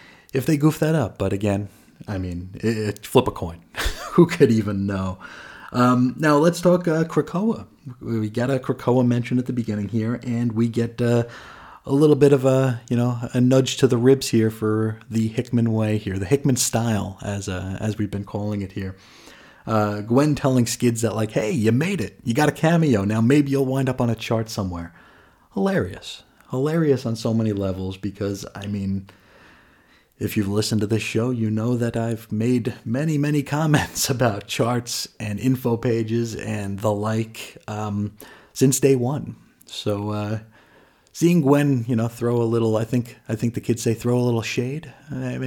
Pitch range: 100-125 Hz